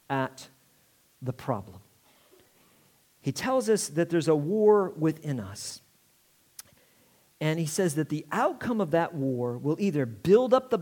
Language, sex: English, male